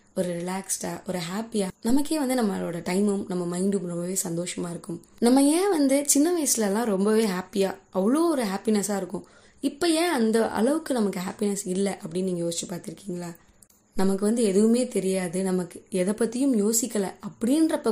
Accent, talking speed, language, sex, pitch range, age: native, 145 wpm, Tamil, female, 185-245 Hz, 20-39